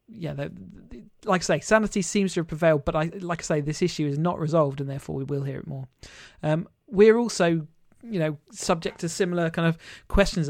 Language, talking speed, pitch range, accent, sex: English, 210 wpm, 150-175 Hz, British, male